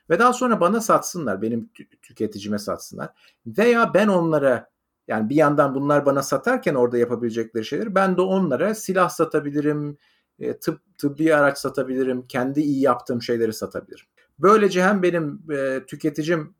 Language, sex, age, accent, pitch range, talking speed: Turkish, male, 50-69, native, 120-175 Hz, 150 wpm